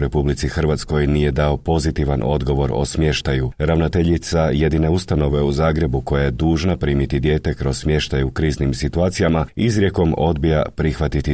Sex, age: male, 40-59